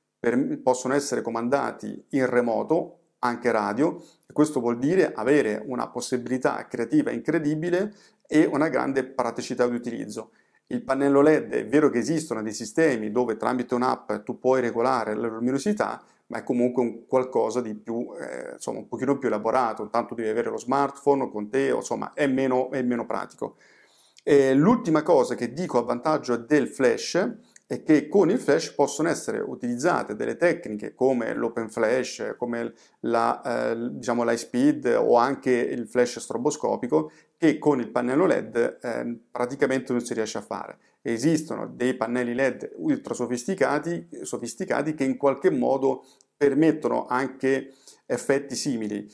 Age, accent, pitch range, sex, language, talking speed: 40-59, native, 120-145 Hz, male, Italian, 155 wpm